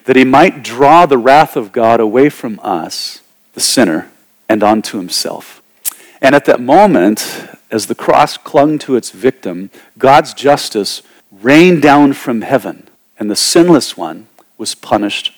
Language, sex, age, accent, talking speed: English, male, 50-69, American, 150 wpm